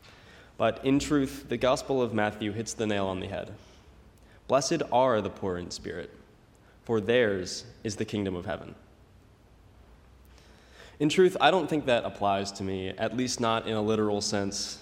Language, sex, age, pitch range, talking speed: English, male, 20-39, 100-125 Hz, 170 wpm